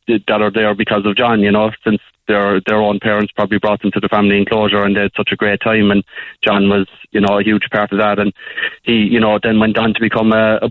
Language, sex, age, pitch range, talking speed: English, male, 20-39, 105-115 Hz, 270 wpm